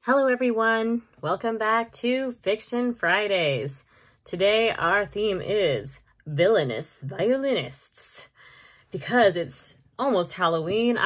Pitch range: 155-220 Hz